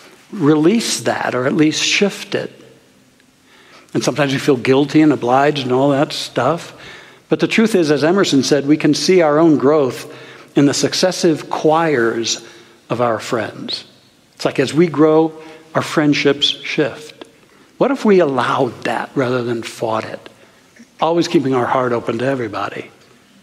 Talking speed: 160 wpm